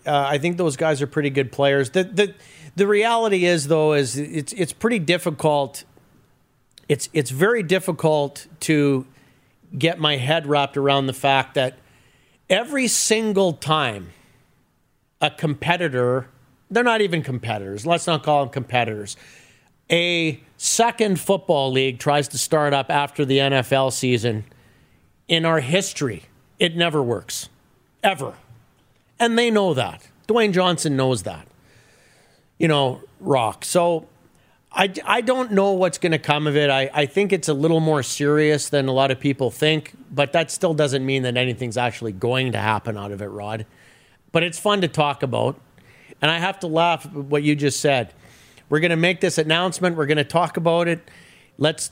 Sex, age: male, 40-59